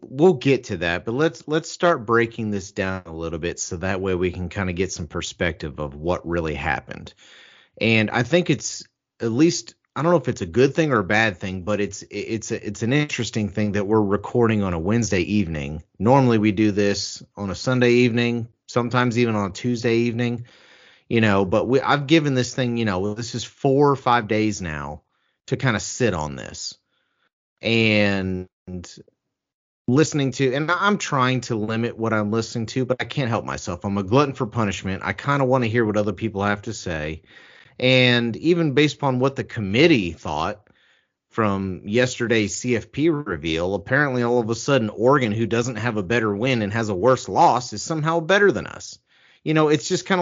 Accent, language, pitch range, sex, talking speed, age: American, English, 100-135 Hz, male, 205 wpm, 30-49